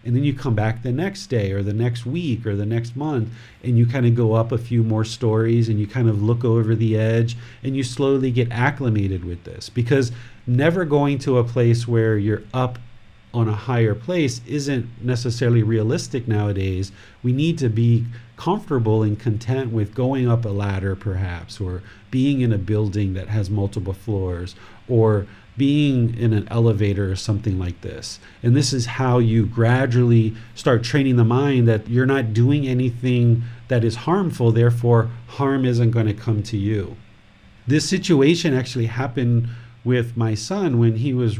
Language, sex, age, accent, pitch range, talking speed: English, male, 40-59, American, 110-125 Hz, 180 wpm